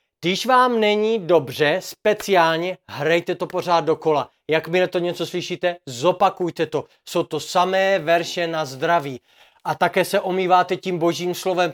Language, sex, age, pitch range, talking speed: Czech, male, 30-49, 165-205 Hz, 150 wpm